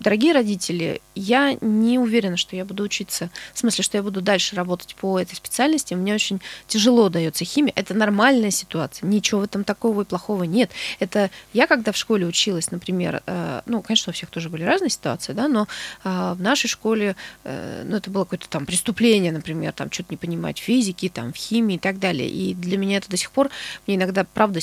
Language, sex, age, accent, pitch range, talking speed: Russian, female, 20-39, native, 185-225 Hz, 195 wpm